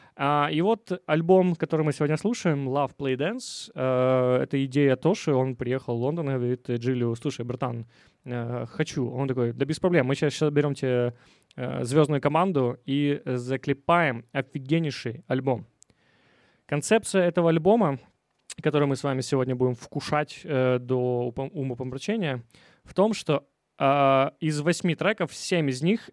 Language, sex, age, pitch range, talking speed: Ukrainian, male, 20-39, 130-155 Hz, 140 wpm